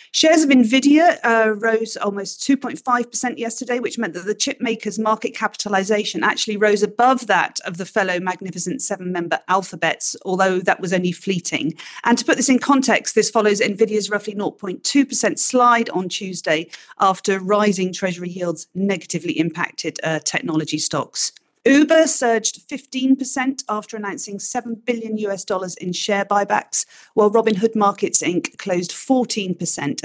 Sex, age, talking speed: female, 40-59, 140 wpm